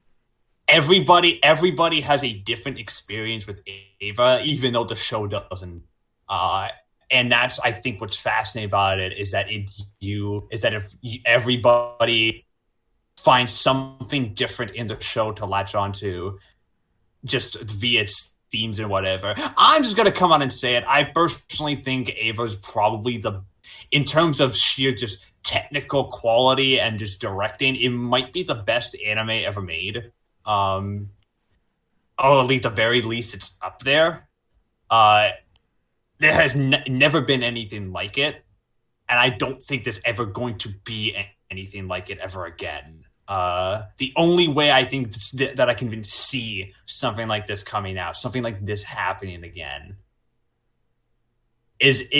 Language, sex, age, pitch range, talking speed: English, male, 20-39, 100-130 Hz, 155 wpm